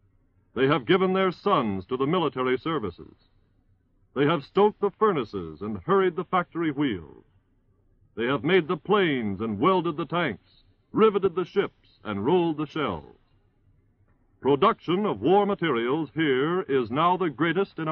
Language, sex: English, male